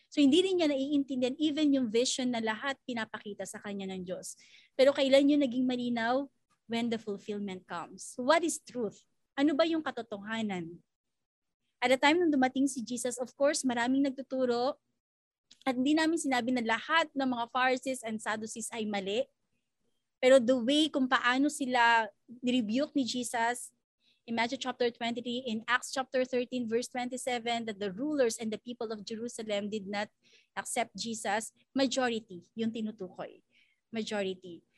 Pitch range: 220-270 Hz